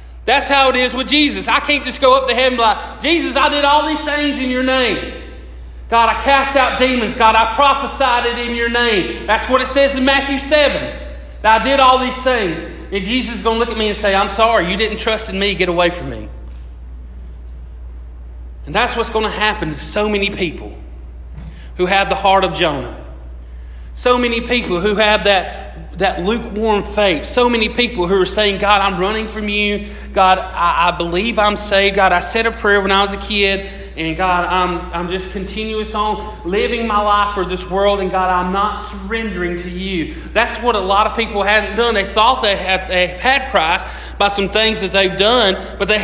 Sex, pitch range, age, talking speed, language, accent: male, 180-240 Hz, 40-59, 220 wpm, English, American